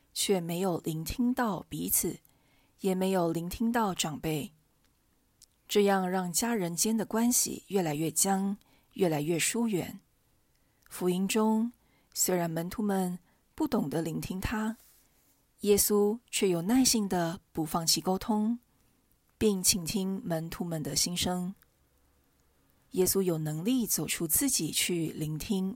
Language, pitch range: Chinese, 165-220 Hz